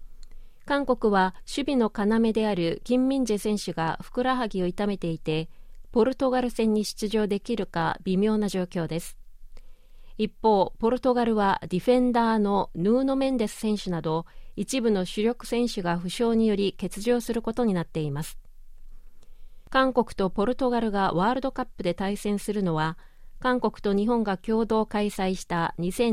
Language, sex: Japanese, female